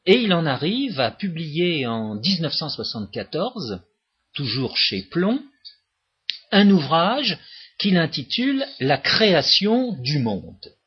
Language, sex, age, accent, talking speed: French, male, 50-69, French, 110 wpm